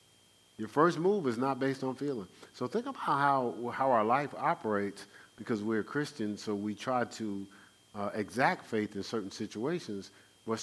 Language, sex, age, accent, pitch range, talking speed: English, male, 50-69, American, 100-135 Hz, 170 wpm